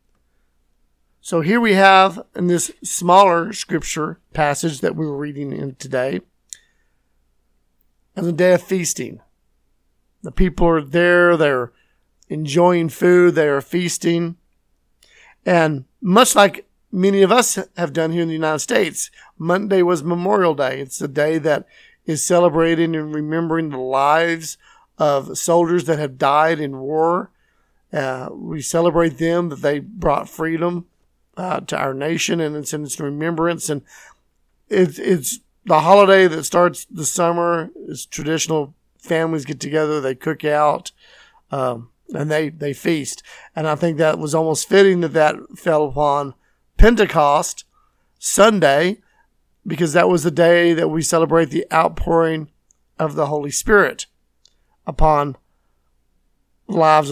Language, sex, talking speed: English, male, 135 wpm